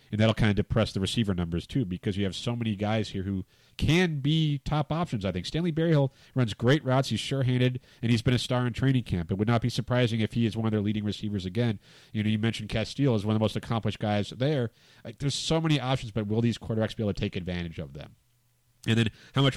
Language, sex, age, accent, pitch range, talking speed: English, male, 40-59, American, 105-125 Hz, 260 wpm